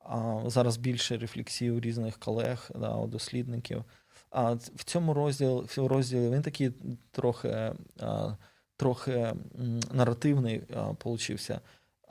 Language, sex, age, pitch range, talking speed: Ukrainian, male, 20-39, 115-130 Hz, 120 wpm